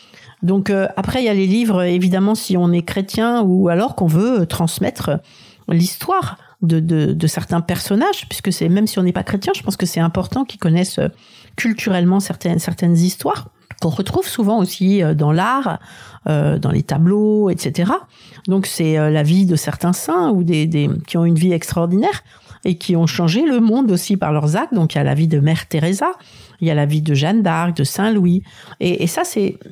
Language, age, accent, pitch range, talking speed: French, 50-69, French, 165-200 Hz, 200 wpm